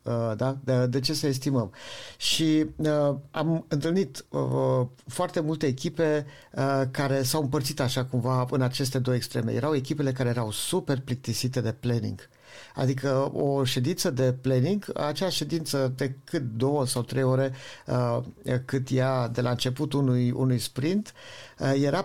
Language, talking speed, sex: Romanian, 135 wpm, male